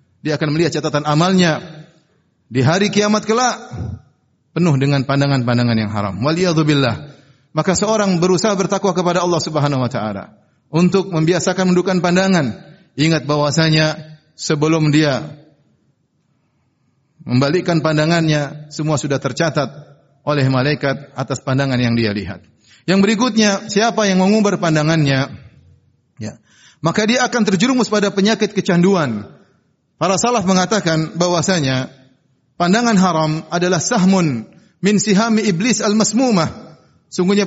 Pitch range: 145-200 Hz